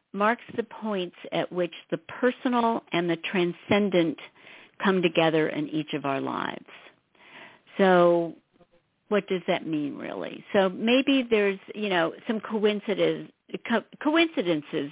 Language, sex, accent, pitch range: English, female, American, 170-240 Hz